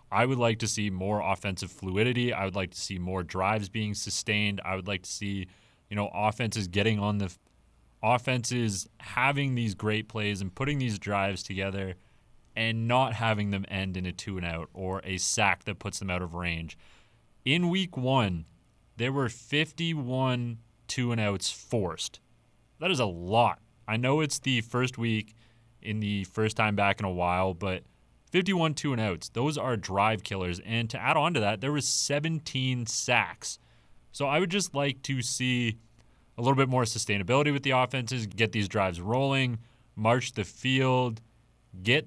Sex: male